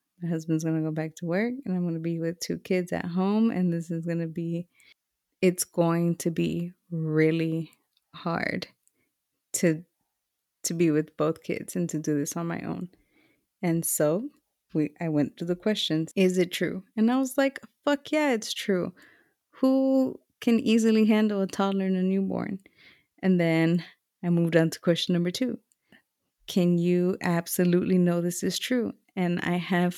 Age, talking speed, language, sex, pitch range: 20-39, 180 wpm, English, female, 170-205 Hz